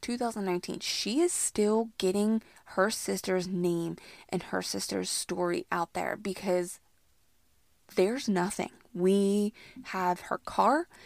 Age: 20-39